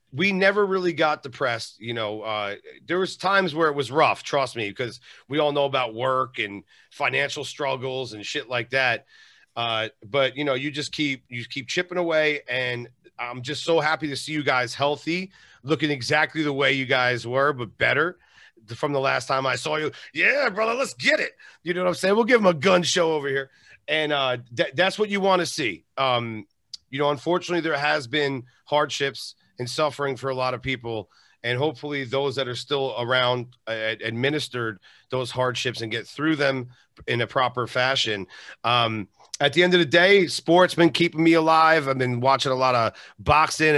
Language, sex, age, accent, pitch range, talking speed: English, male, 40-59, American, 125-165 Hz, 200 wpm